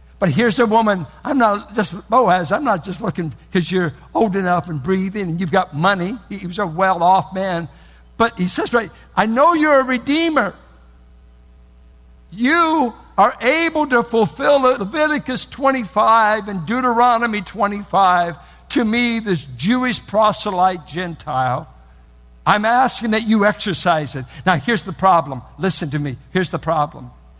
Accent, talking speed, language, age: American, 155 wpm, English, 60-79